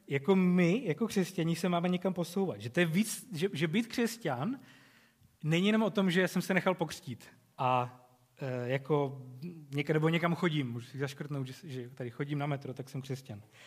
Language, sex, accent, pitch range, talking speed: Czech, male, native, 135-180 Hz, 195 wpm